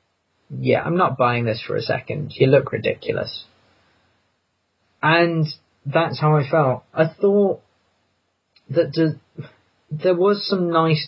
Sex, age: male, 30-49